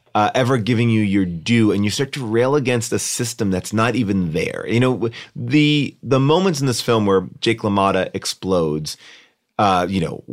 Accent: American